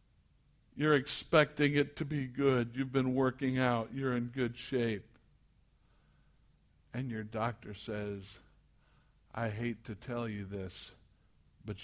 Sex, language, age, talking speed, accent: male, English, 60-79, 125 wpm, American